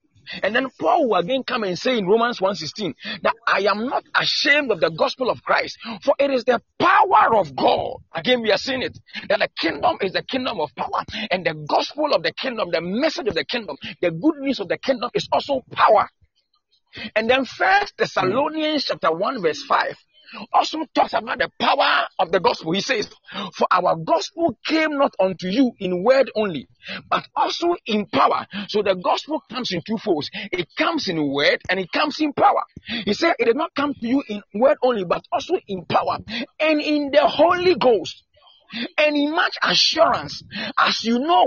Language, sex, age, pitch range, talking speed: English, male, 40-59, 205-305 Hz, 195 wpm